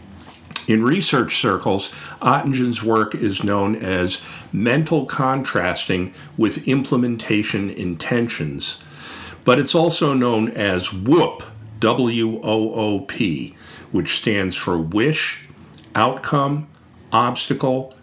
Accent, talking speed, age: American, 85 wpm, 50-69